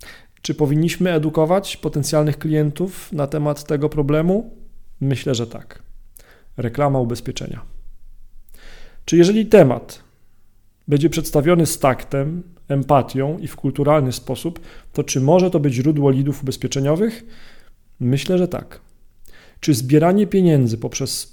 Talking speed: 115 wpm